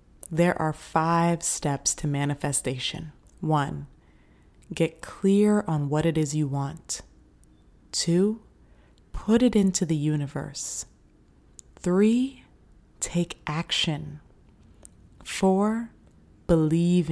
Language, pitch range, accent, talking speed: English, 140-175 Hz, American, 90 wpm